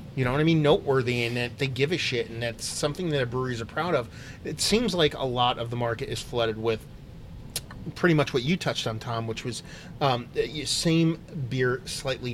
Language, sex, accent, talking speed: English, male, American, 220 wpm